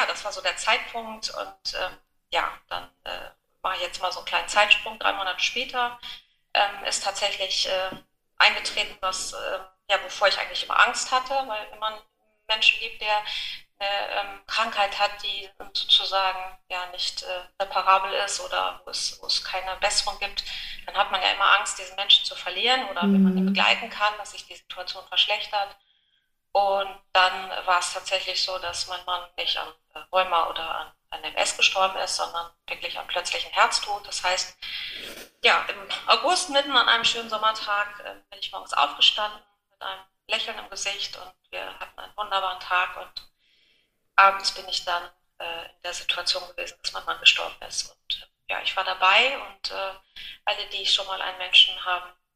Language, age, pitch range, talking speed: German, 30-49, 185-210 Hz, 180 wpm